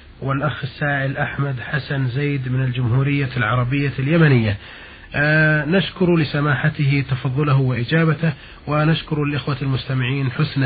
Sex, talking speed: male, 95 wpm